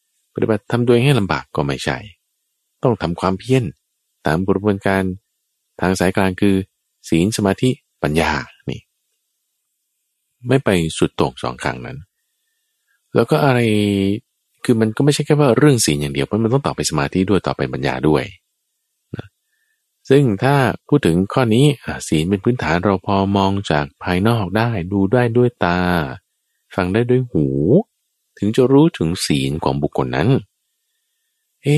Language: Thai